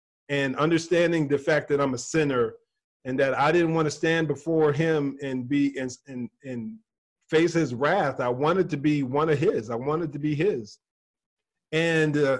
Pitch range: 145-175 Hz